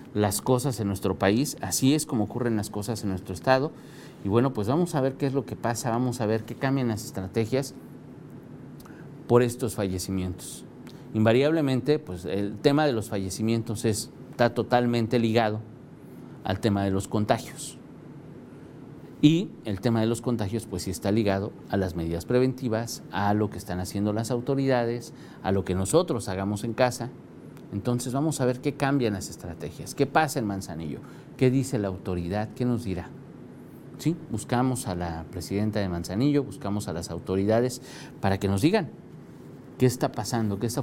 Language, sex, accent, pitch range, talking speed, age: Spanish, male, Mexican, 100-130 Hz, 170 wpm, 50-69